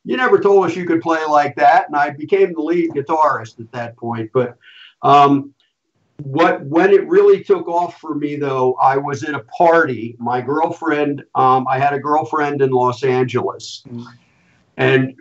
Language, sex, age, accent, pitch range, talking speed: English, male, 50-69, American, 125-160 Hz, 180 wpm